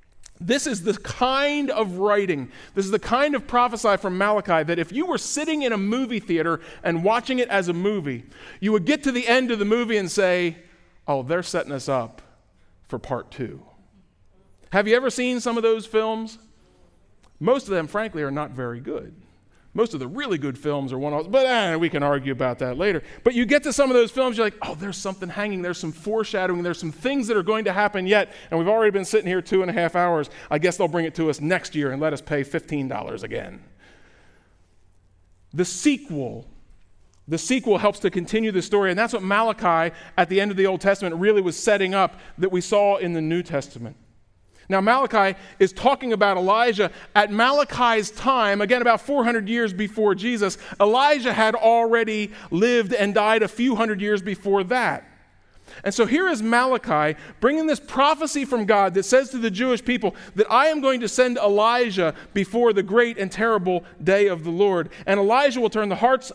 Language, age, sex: English, 40-59, male